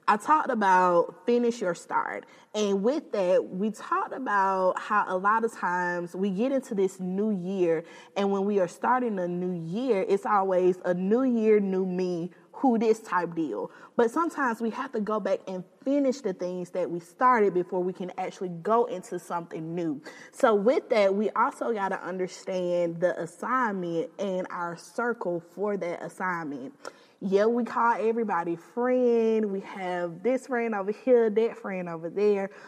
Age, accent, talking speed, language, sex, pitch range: 20-39, American, 175 wpm, English, female, 175-235 Hz